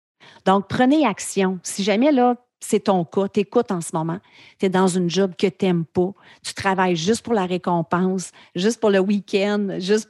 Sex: female